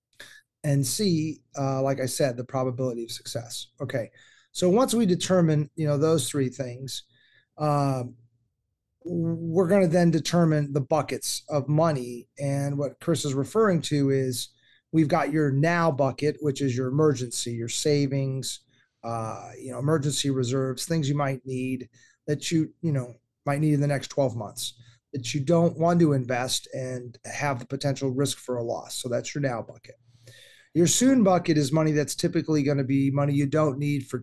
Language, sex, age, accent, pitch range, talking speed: English, male, 30-49, American, 130-155 Hz, 180 wpm